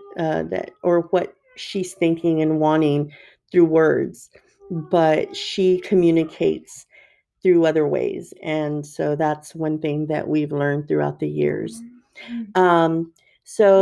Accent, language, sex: American, English, female